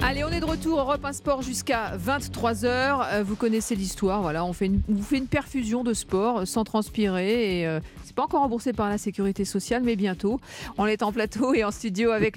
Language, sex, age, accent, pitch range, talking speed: French, female, 40-59, French, 190-235 Hz, 215 wpm